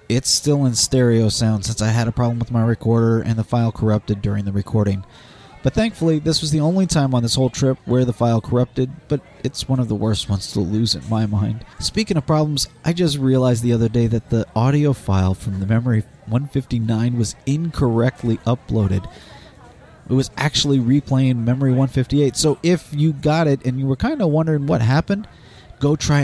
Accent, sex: American, male